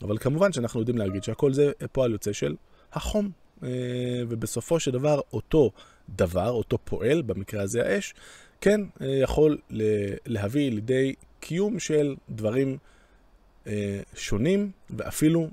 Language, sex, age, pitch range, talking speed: Hebrew, male, 20-39, 100-135 Hz, 110 wpm